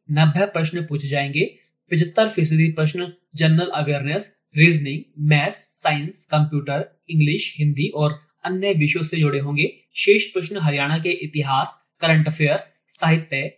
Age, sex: 20-39, male